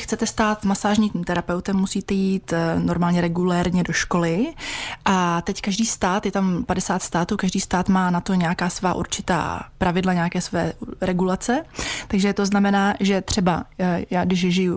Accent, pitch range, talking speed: native, 175-200 Hz, 155 wpm